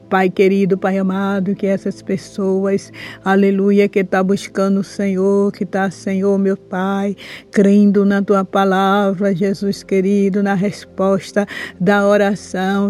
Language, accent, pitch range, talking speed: Portuguese, Brazilian, 195-210 Hz, 130 wpm